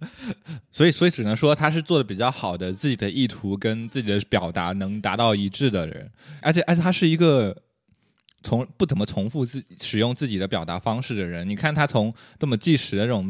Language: Chinese